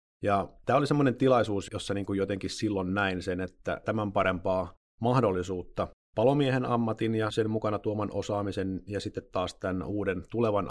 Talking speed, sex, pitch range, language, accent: 155 wpm, male, 90-110 Hz, Finnish, native